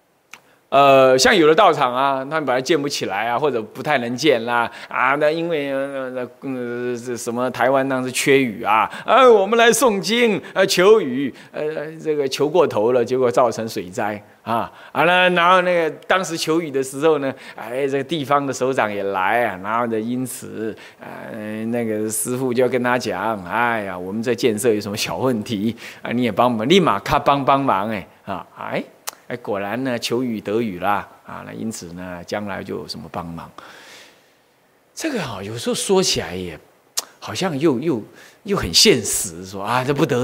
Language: Chinese